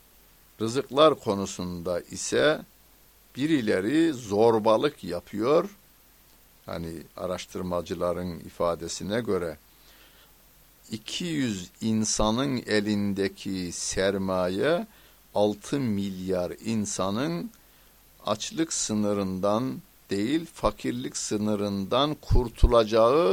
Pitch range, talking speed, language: 90-105 Hz, 60 wpm, Turkish